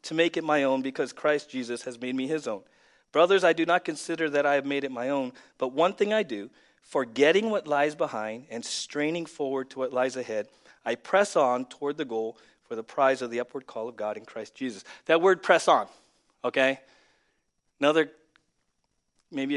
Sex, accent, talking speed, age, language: male, American, 200 wpm, 40-59, English